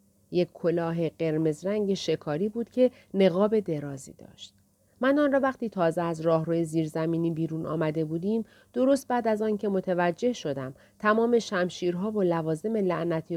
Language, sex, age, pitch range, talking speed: Persian, female, 40-59, 150-215 Hz, 145 wpm